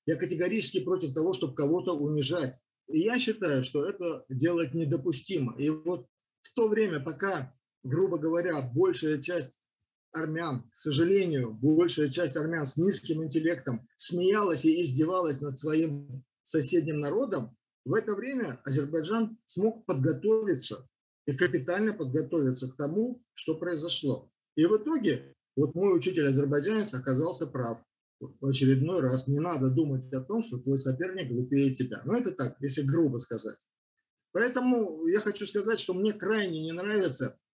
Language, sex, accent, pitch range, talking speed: Russian, male, native, 135-185 Hz, 140 wpm